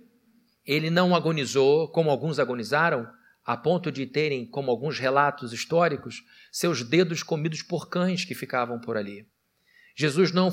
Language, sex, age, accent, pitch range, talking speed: Portuguese, male, 50-69, Brazilian, 140-185 Hz, 140 wpm